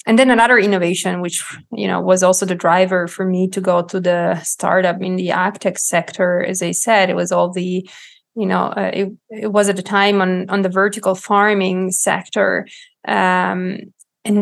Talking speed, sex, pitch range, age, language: 190 wpm, female, 185-210 Hz, 20-39, English